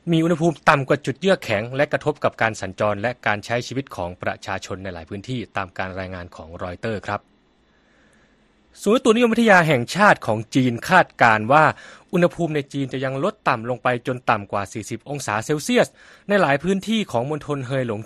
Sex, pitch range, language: male, 110-170 Hz, Thai